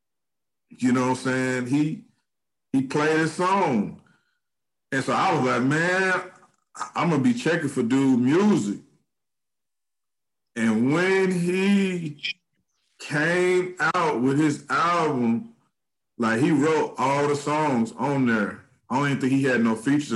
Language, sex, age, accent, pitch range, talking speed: English, male, 50-69, American, 120-175 Hz, 140 wpm